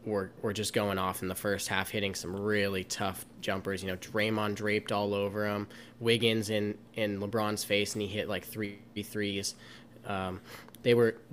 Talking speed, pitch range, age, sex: 185 wpm, 105-115 Hz, 10-29, male